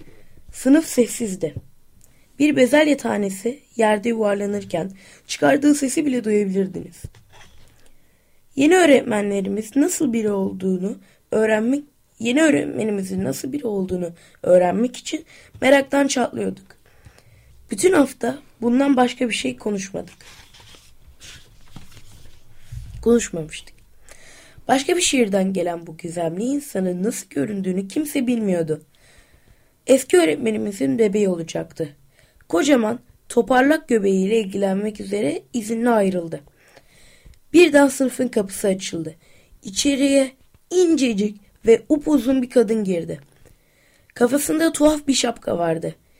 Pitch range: 190-275 Hz